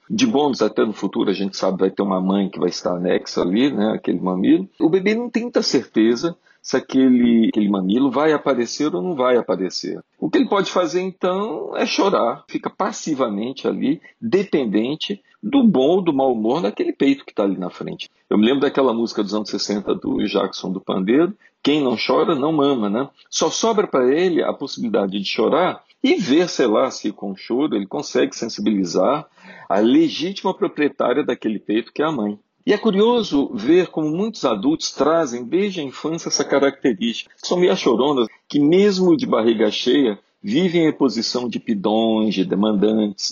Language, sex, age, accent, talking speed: Portuguese, male, 50-69, Brazilian, 185 wpm